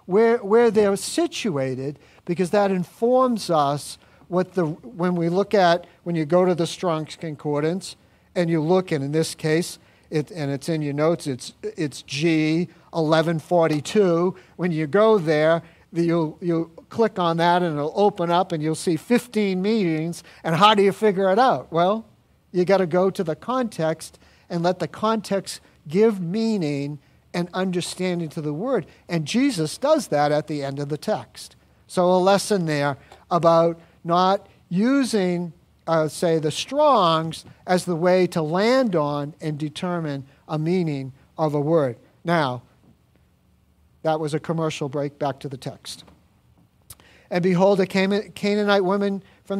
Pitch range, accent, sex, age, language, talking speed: 155-200 Hz, American, male, 50-69, English, 155 wpm